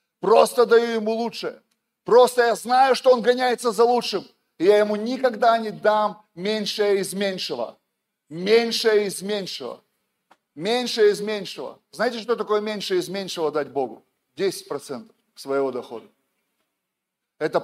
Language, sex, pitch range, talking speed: Russian, male, 170-235 Hz, 135 wpm